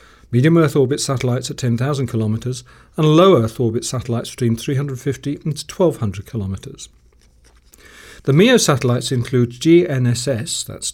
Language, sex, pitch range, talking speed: English, male, 115-140 Hz, 115 wpm